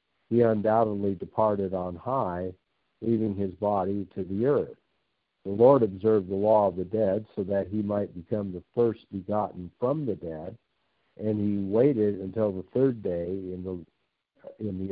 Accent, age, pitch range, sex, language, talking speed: American, 60-79, 95-110 Hz, male, English, 165 wpm